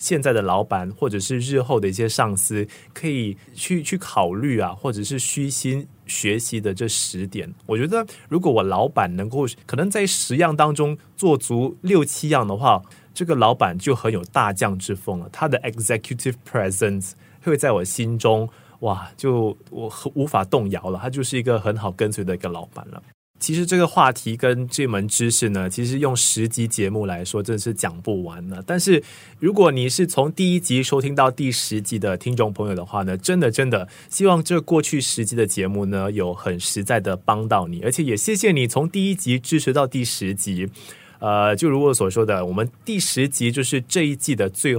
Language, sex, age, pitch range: Chinese, male, 20-39, 100-140 Hz